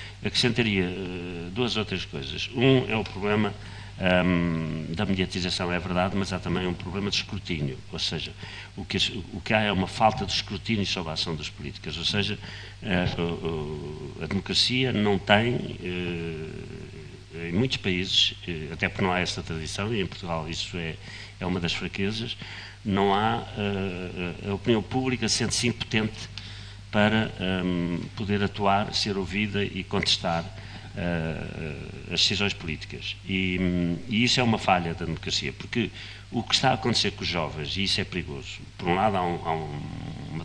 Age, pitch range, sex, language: 50-69, 90-110 Hz, male, Portuguese